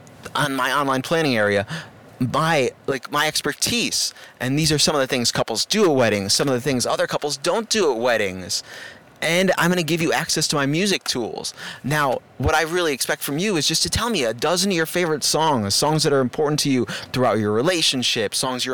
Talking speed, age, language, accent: 225 wpm, 30-49, English, American